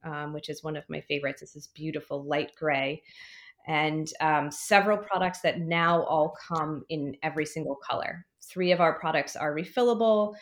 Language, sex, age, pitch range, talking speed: English, female, 20-39, 155-175 Hz, 175 wpm